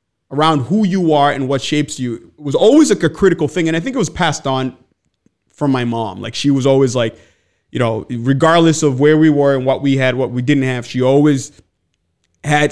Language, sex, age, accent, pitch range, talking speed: English, male, 30-49, American, 125-155 Hz, 220 wpm